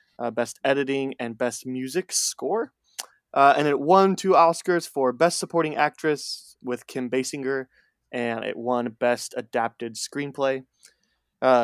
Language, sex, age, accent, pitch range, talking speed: English, male, 20-39, American, 125-155 Hz, 140 wpm